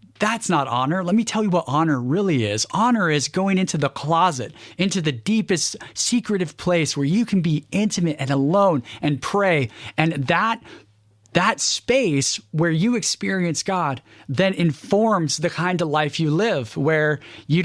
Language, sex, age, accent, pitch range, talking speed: English, male, 40-59, American, 145-195 Hz, 165 wpm